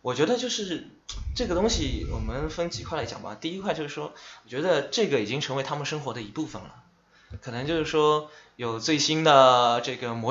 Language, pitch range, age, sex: Chinese, 120-155 Hz, 20-39, male